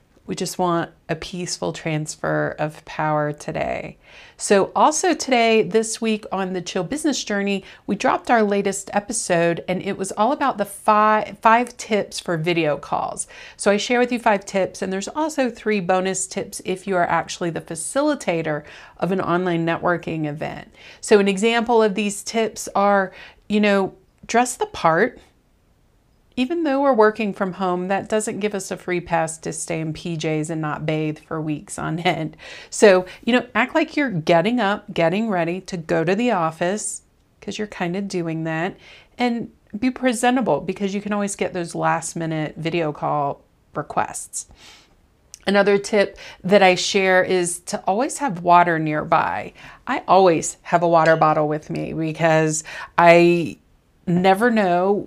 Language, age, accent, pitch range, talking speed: English, 40-59, American, 165-210 Hz, 170 wpm